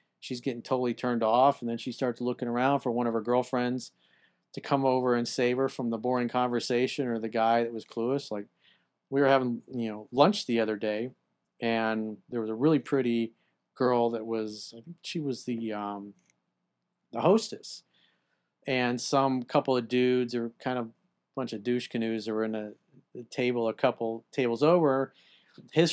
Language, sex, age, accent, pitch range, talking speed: English, male, 40-59, American, 110-130 Hz, 185 wpm